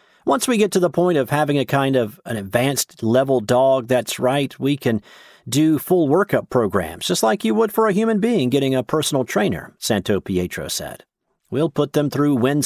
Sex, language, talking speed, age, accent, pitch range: male, English, 205 wpm, 50-69, American, 120-160 Hz